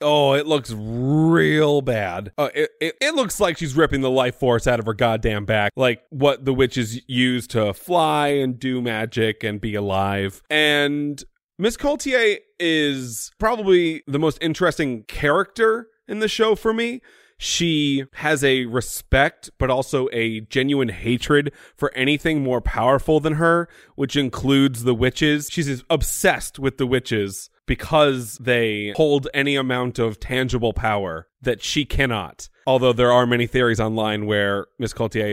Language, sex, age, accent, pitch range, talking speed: English, male, 30-49, American, 115-150 Hz, 155 wpm